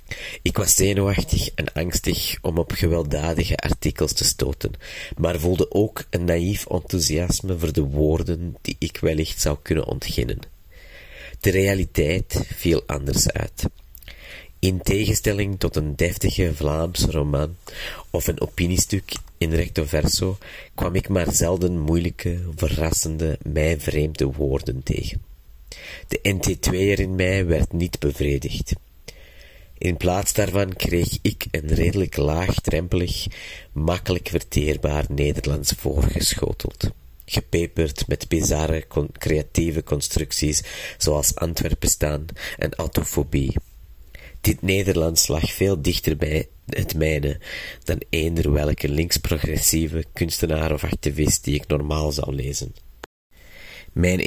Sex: male